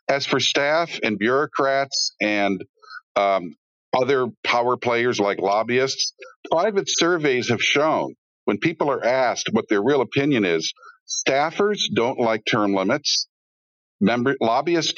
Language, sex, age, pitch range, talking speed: English, male, 50-69, 110-150 Hz, 125 wpm